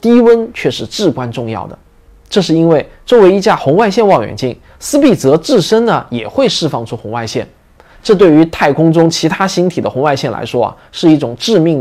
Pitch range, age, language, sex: 130-205 Hz, 20-39, Chinese, male